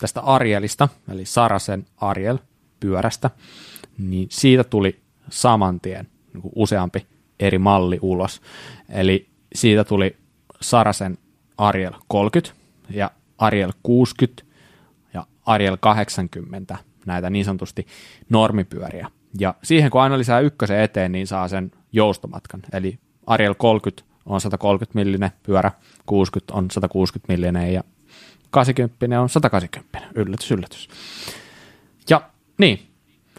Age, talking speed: 20-39, 110 wpm